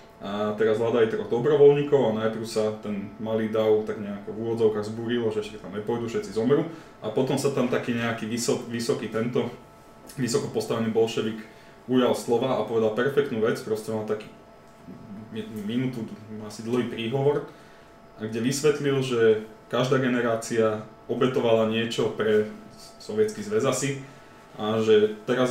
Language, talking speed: Slovak, 140 wpm